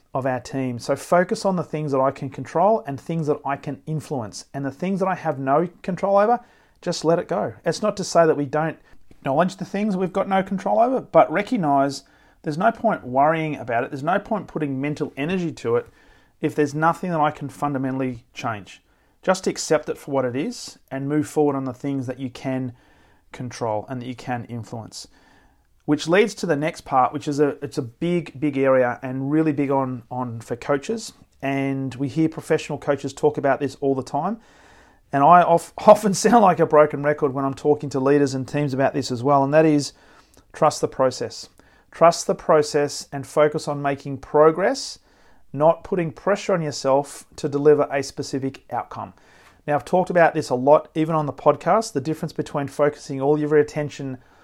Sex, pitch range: male, 135-165 Hz